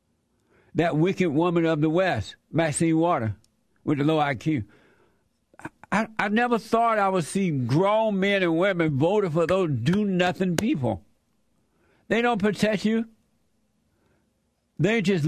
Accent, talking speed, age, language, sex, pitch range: American, 140 wpm, 60-79, English, male, 135-180 Hz